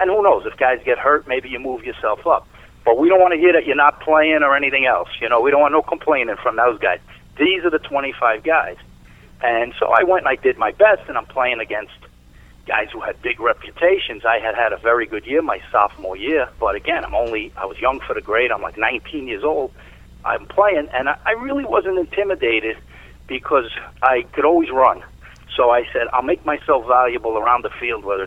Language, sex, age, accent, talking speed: English, male, 50-69, American, 225 wpm